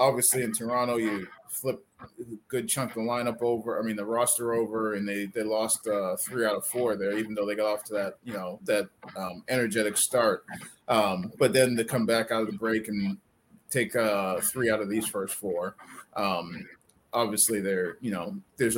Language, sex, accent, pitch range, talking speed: English, male, American, 105-120 Hz, 210 wpm